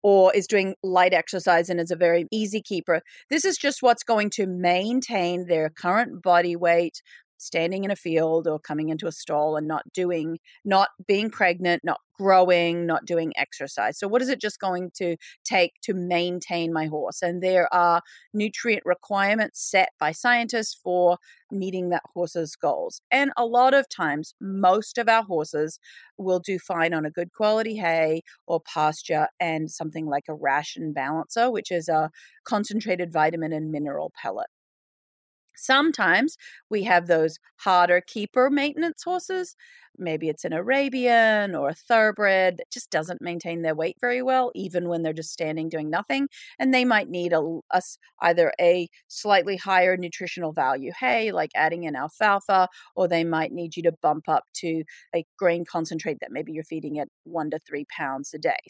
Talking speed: 175 wpm